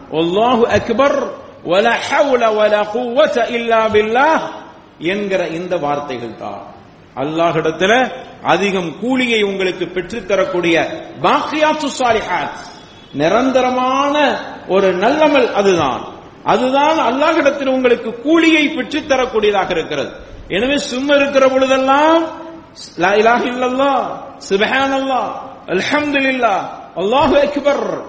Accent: Indian